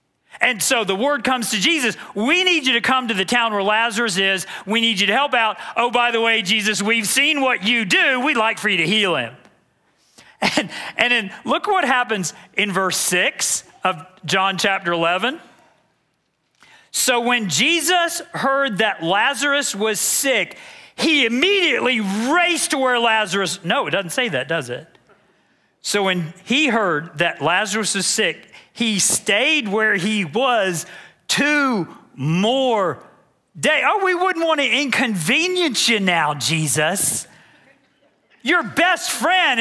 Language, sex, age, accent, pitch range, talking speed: English, male, 40-59, American, 205-280 Hz, 155 wpm